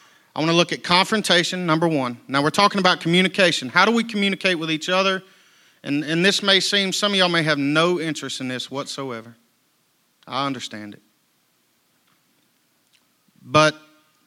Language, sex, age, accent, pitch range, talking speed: English, male, 40-59, American, 125-165 Hz, 165 wpm